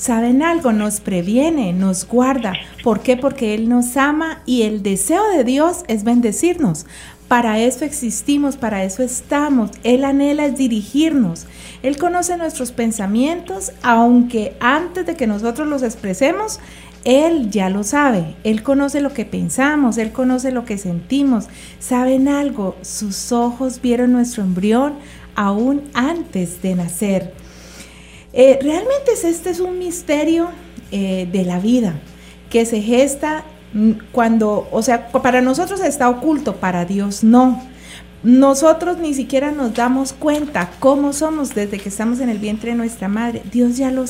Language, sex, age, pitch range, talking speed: Spanish, female, 50-69, 215-280 Hz, 145 wpm